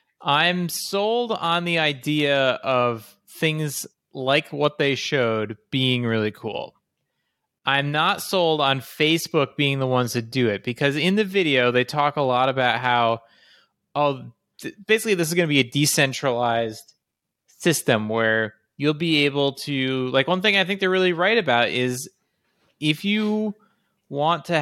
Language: English